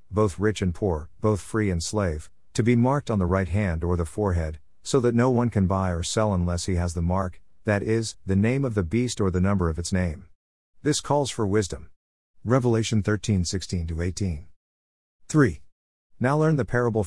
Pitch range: 85-115 Hz